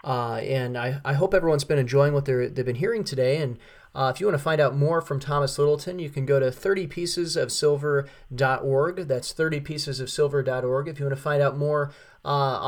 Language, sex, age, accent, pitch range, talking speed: English, male, 30-49, American, 135-165 Hz, 195 wpm